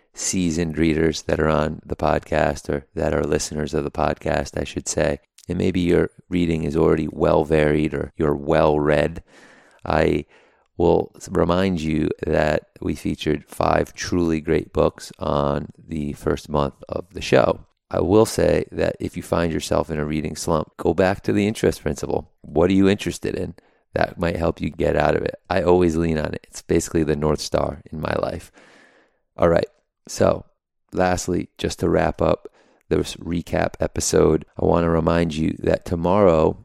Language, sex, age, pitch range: English, male, 30-49, 80-90 Hz